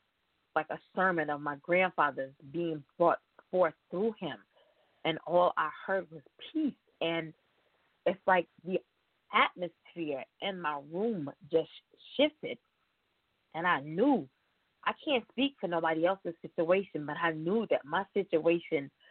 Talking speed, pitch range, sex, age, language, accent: 135 wpm, 155-180 Hz, female, 20-39, English, American